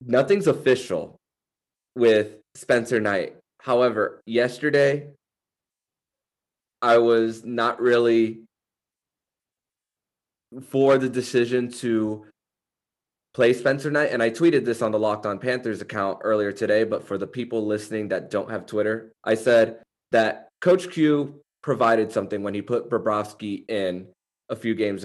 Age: 20-39